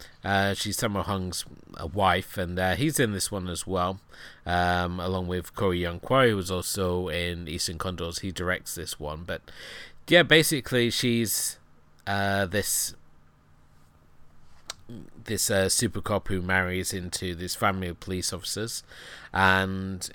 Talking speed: 145 wpm